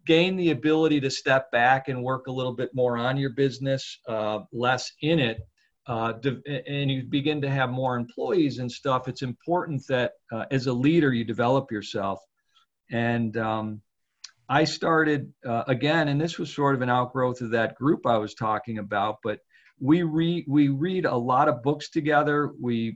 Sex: male